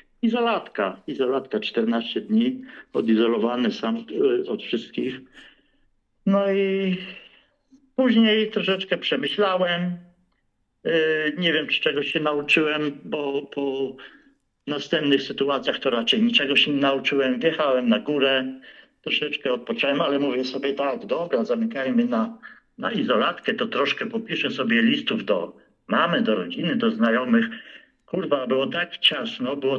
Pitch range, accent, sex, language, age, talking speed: 140-195 Hz, native, male, Polish, 50-69, 120 wpm